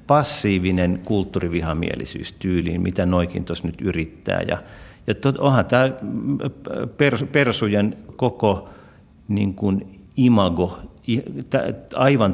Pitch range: 95-115 Hz